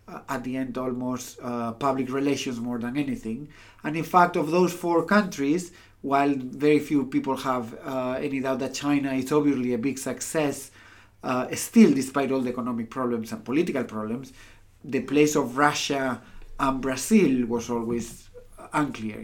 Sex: male